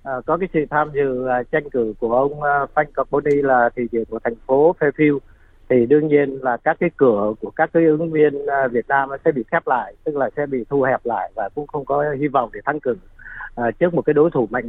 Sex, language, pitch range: male, Vietnamese, 125-160 Hz